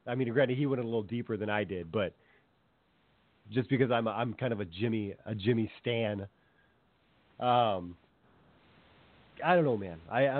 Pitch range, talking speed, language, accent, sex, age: 110-135 Hz, 165 wpm, English, American, male, 30-49